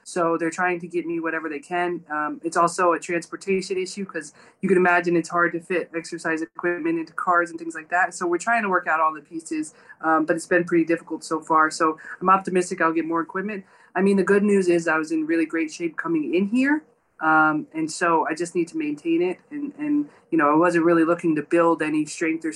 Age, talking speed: 20-39, 245 wpm